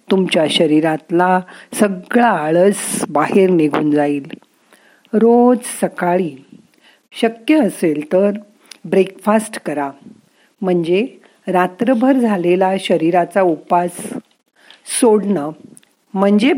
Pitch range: 170-215 Hz